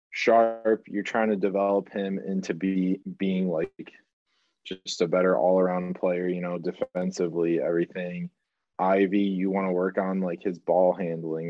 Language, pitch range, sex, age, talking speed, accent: English, 90-100 Hz, male, 20-39, 150 wpm, American